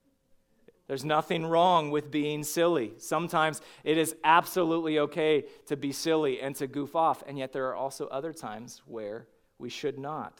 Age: 40-59